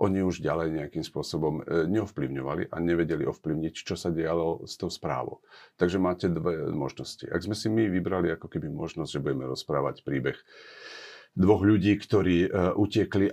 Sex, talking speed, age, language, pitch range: male, 160 wpm, 50-69, Slovak, 75-90 Hz